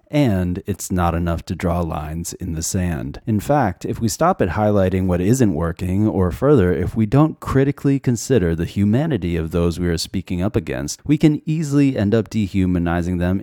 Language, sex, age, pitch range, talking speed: English, male, 30-49, 85-110 Hz, 190 wpm